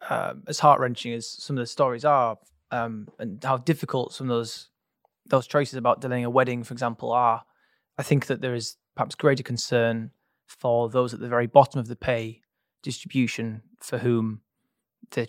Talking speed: 180 wpm